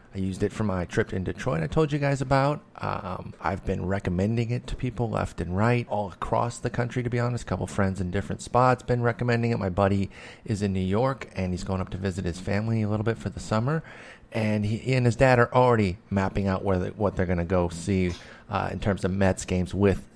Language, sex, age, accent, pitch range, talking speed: English, male, 30-49, American, 95-120 Hz, 245 wpm